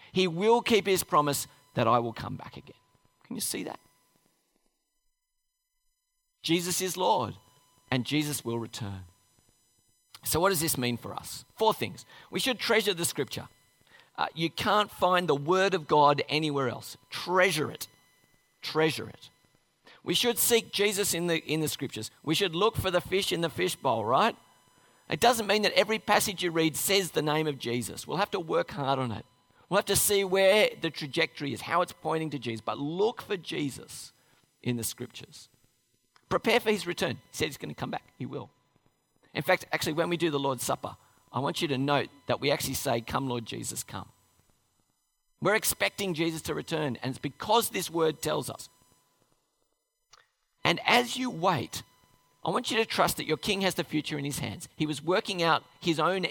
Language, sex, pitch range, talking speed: English, male, 130-190 Hz, 190 wpm